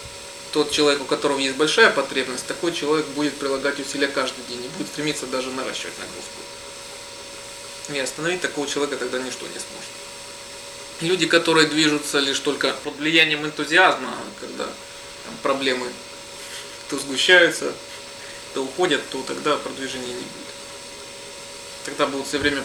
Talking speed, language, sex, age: 135 wpm, Russian, male, 20-39